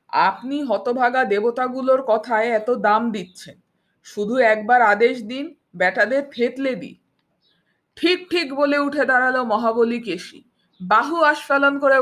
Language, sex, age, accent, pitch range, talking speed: Bengali, female, 50-69, native, 235-305 Hz, 125 wpm